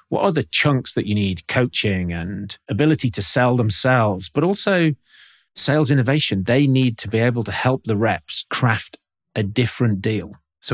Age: 30-49